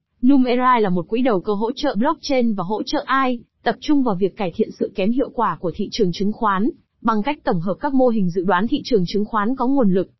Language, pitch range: Vietnamese, 195-255 Hz